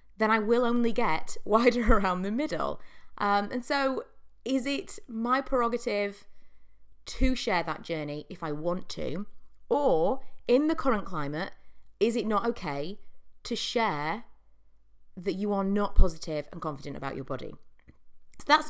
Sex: female